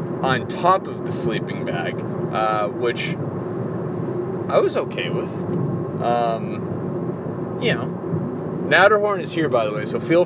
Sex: male